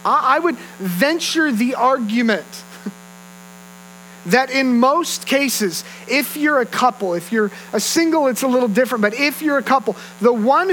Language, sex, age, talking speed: English, male, 40-59, 155 wpm